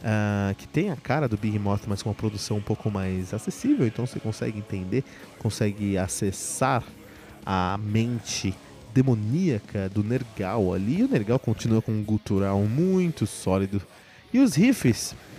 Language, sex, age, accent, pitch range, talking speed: Portuguese, male, 20-39, Brazilian, 110-180 Hz, 150 wpm